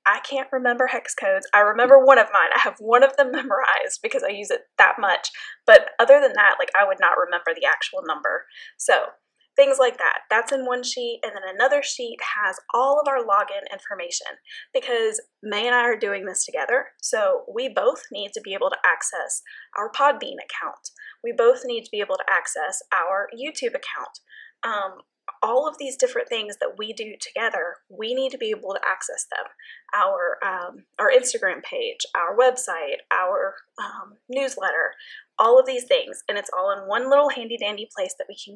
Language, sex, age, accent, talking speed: English, female, 10-29, American, 195 wpm